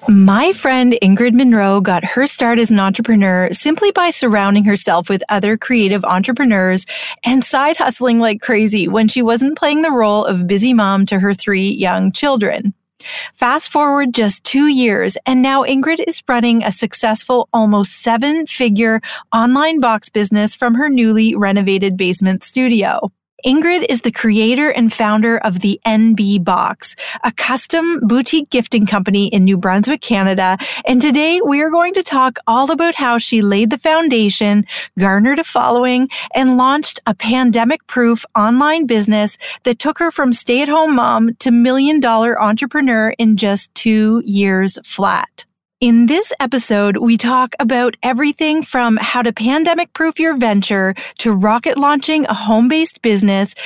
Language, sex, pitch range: English, female, 210-280 Hz